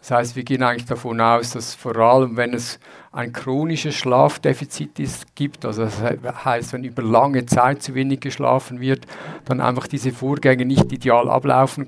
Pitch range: 125-140 Hz